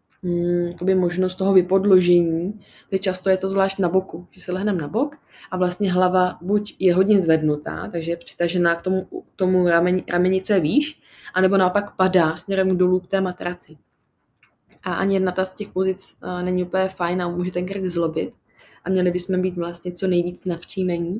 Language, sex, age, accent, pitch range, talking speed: Czech, female, 20-39, native, 175-195 Hz, 180 wpm